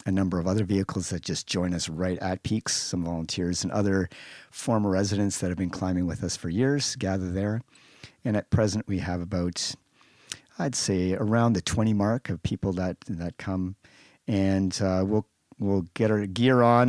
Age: 50-69